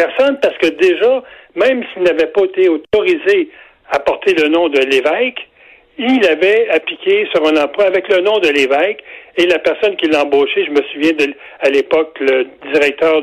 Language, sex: French, male